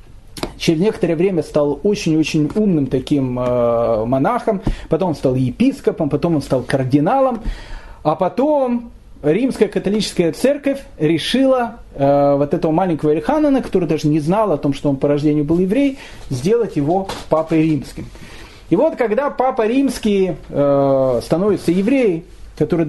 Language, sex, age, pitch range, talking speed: Russian, male, 40-59, 155-240 Hz, 140 wpm